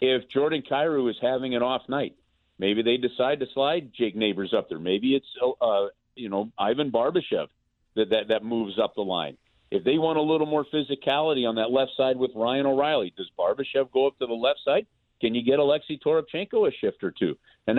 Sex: male